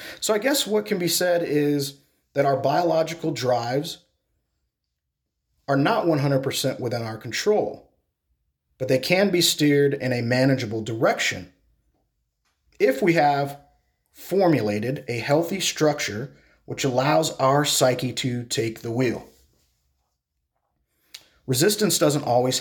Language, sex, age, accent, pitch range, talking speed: English, male, 40-59, American, 110-150 Hz, 120 wpm